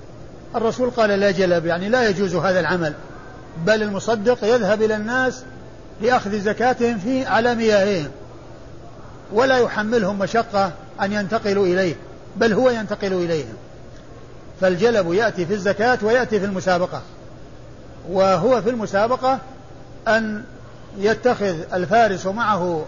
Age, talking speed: 50-69, 115 wpm